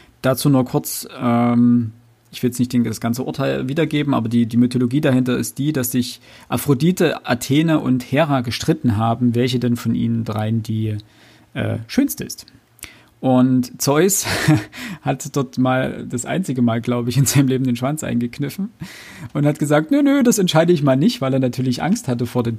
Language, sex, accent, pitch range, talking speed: German, male, German, 120-150 Hz, 185 wpm